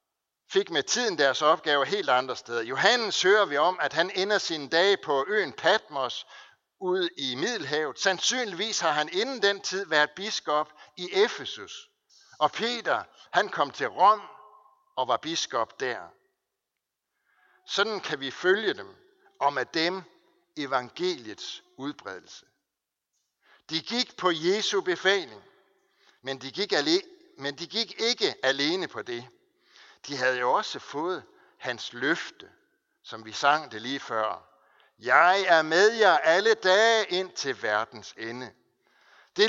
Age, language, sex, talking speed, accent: 60-79, Danish, male, 140 wpm, native